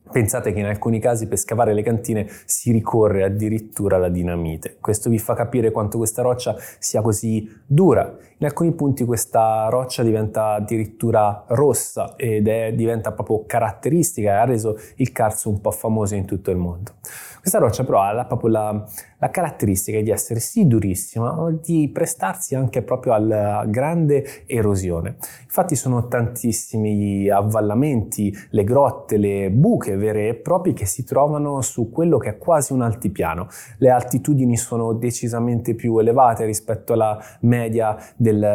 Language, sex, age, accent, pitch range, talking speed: Italian, male, 20-39, native, 105-125 Hz, 155 wpm